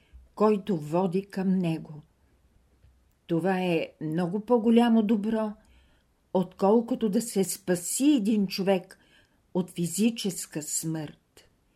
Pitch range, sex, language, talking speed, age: 165-210 Hz, female, Bulgarian, 90 wpm, 50-69